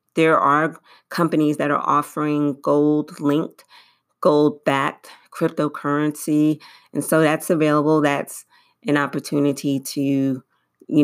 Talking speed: 110 wpm